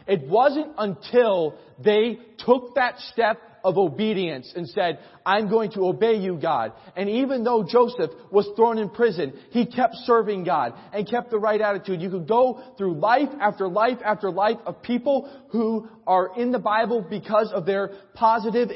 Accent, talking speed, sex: American, 175 wpm, male